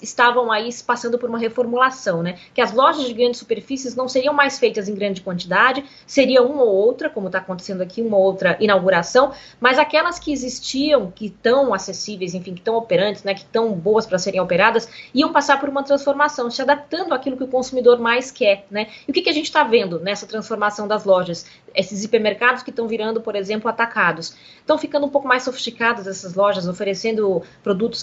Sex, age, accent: female, 20-39, Brazilian